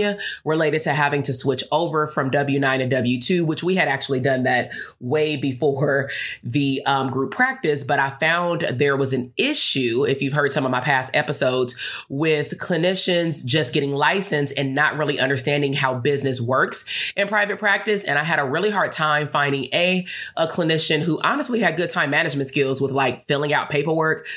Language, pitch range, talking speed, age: English, 140-165 Hz, 185 wpm, 30-49